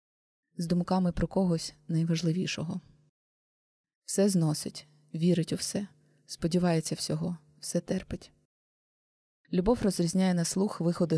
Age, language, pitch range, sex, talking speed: 20-39, Ukrainian, 160-190 Hz, female, 100 wpm